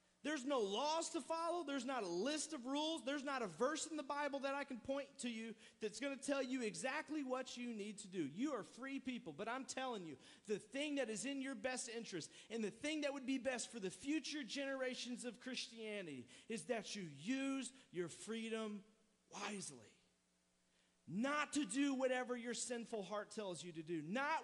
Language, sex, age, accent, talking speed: English, male, 40-59, American, 205 wpm